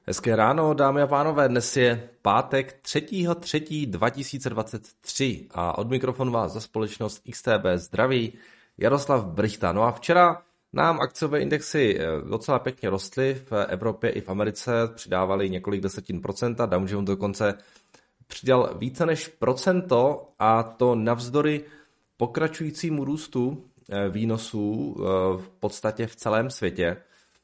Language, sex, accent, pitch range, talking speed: Czech, male, native, 100-130 Hz, 120 wpm